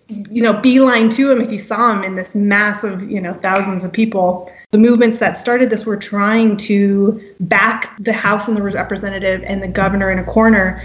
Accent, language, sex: American, English, female